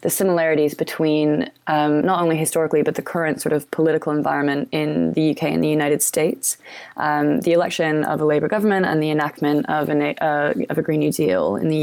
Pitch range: 145-165 Hz